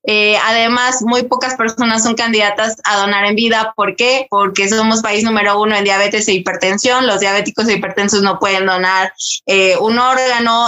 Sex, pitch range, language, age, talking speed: female, 205-250 Hz, Spanish, 20-39, 180 wpm